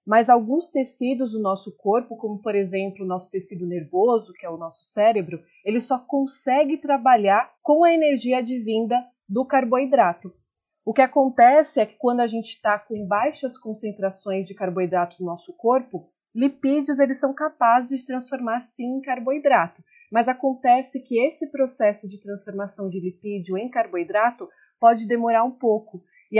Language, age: Portuguese, 30-49